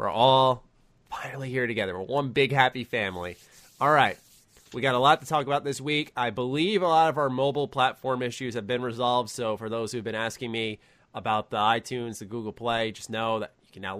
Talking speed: 225 wpm